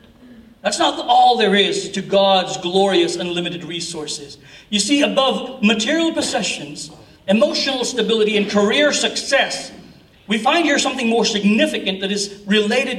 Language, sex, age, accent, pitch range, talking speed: English, male, 40-59, American, 160-240 Hz, 135 wpm